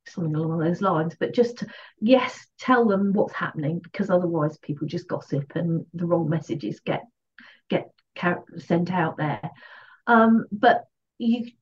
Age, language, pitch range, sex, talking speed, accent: 40-59, English, 170-200 Hz, female, 150 wpm, British